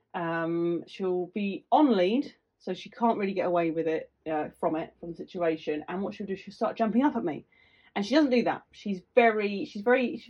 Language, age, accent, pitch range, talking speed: English, 30-49, British, 170-205 Hz, 225 wpm